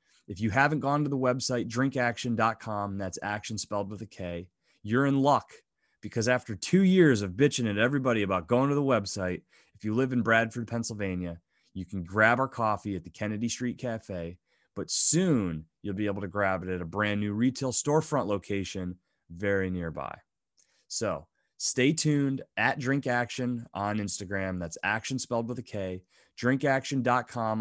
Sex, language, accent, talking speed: male, English, American, 165 wpm